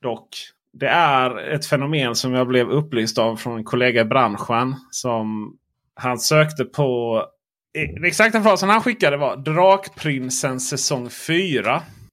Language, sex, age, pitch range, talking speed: Swedish, male, 30-49, 125-165 Hz, 140 wpm